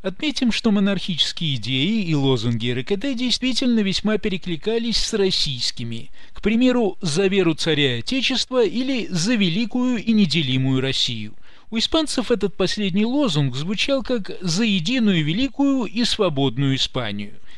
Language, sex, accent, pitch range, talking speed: Russian, male, native, 175-250 Hz, 125 wpm